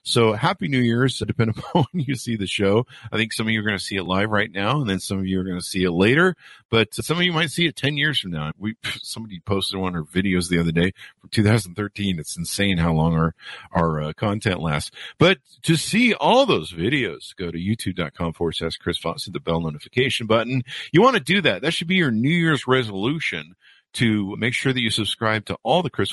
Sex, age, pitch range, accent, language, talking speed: male, 50-69, 95-130 Hz, American, English, 250 wpm